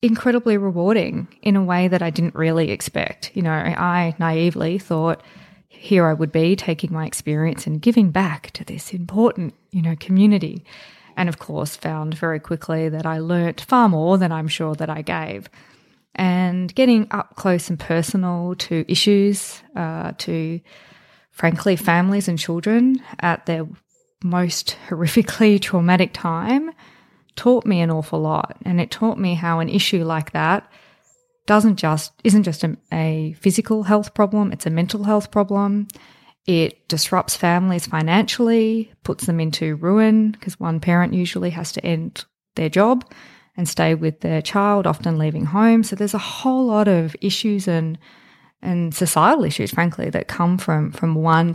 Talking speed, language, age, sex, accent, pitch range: 160 wpm, English, 20-39, female, Australian, 165-205 Hz